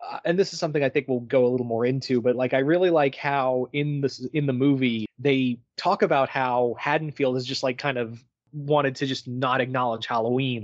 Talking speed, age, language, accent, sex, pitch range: 225 wpm, 20-39, English, American, male, 125-150 Hz